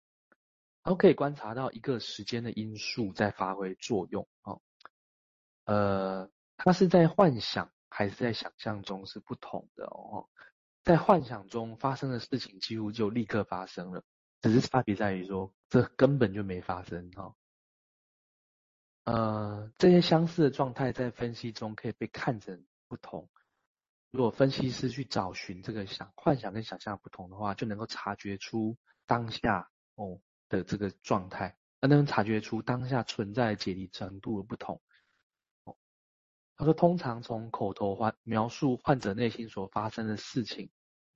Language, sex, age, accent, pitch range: Chinese, male, 20-39, native, 100-130 Hz